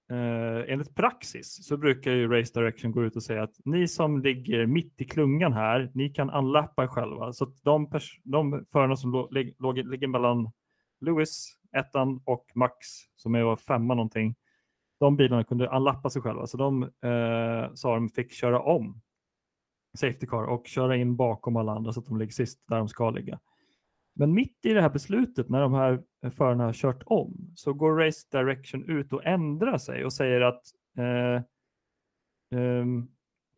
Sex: male